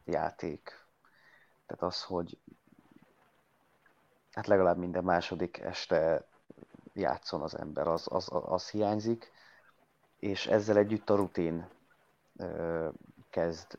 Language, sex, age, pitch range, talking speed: Hungarian, male, 30-49, 90-110 Hz, 95 wpm